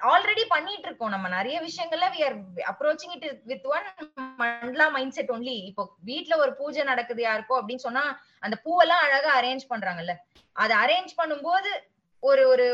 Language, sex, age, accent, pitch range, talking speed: Tamil, female, 20-39, native, 210-295 Hz, 120 wpm